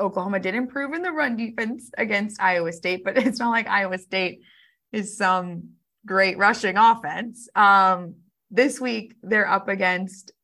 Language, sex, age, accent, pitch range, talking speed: English, female, 20-39, American, 185-230 Hz, 155 wpm